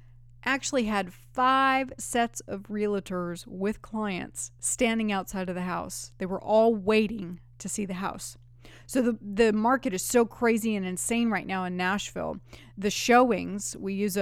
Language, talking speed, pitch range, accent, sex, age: English, 160 wpm, 180-250 Hz, American, female, 30-49